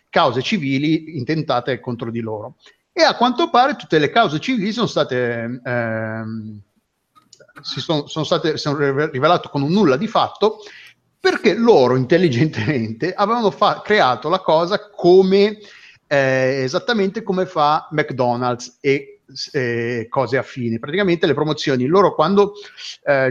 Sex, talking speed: male, 135 wpm